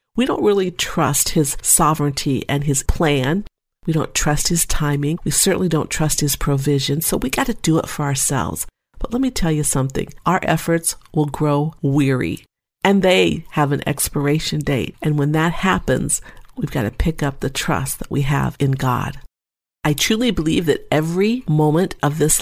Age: 50-69